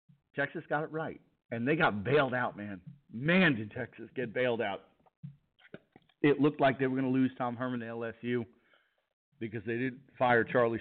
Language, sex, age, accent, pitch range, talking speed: English, male, 40-59, American, 115-140 Hz, 185 wpm